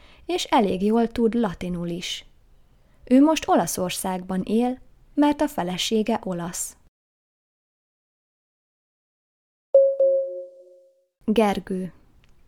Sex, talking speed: female, 70 wpm